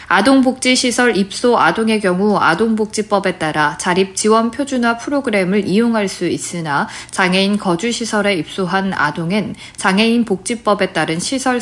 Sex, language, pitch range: female, Korean, 180-230 Hz